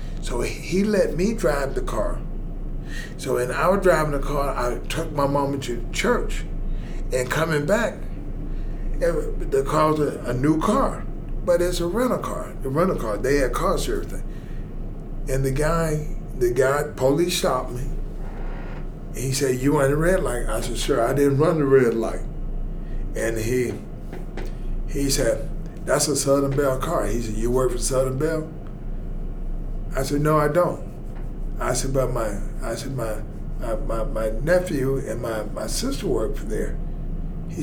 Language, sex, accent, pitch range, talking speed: English, male, American, 130-175 Hz, 165 wpm